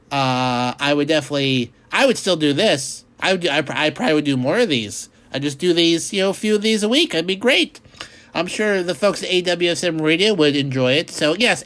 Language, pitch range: English, 145-245 Hz